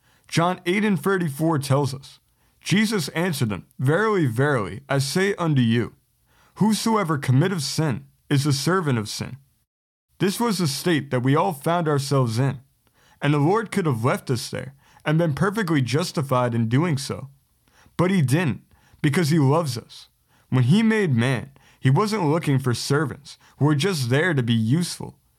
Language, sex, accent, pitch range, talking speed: English, male, American, 130-170 Hz, 170 wpm